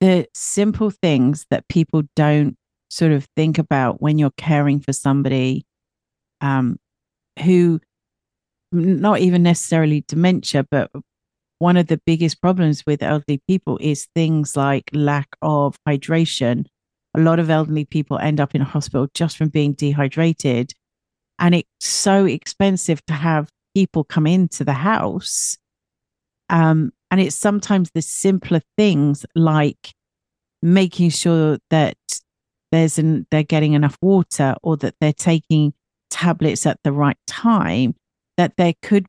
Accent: British